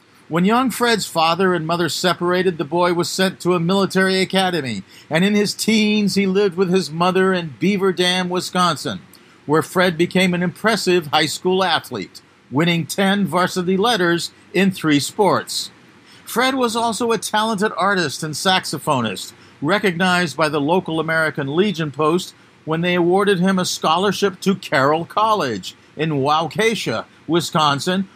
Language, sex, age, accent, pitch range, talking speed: English, male, 50-69, American, 155-195 Hz, 150 wpm